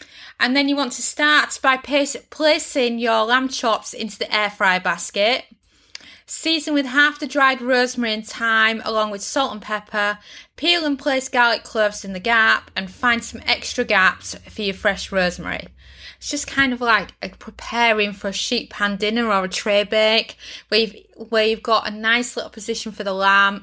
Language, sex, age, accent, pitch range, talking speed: English, female, 20-39, British, 205-250 Hz, 185 wpm